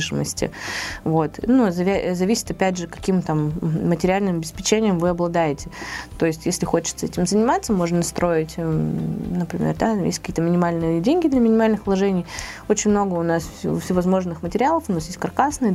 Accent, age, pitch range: native, 20-39, 160-200 Hz